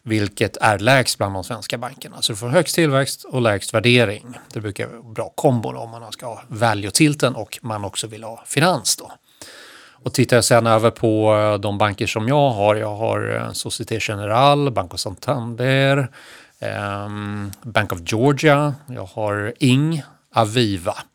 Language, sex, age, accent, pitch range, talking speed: Swedish, male, 30-49, native, 105-125 Hz, 160 wpm